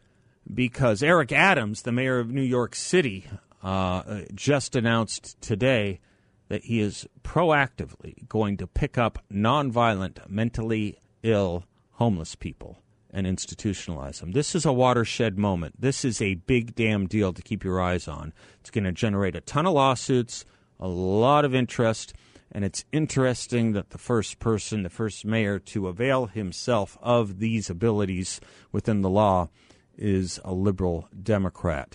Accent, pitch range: American, 95-120 Hz